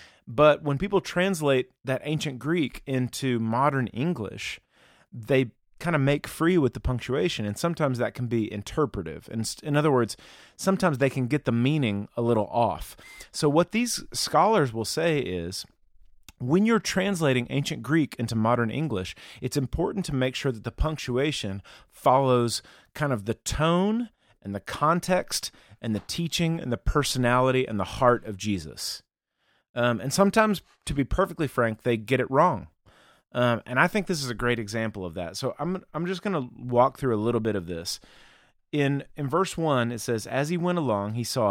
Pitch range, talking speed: 115-150 Hz, 180 wpm